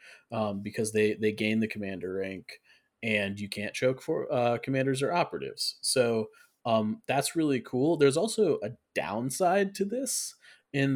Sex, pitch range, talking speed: male, 110-145 Hz, 160 wpm